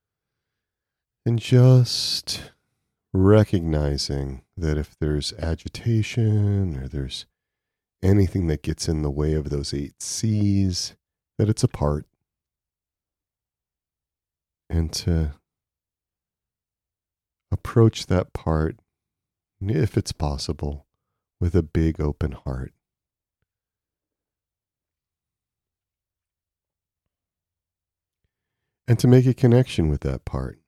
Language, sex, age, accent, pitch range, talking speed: English, male, 40-59, American, 80-100 Hz, 85 wpm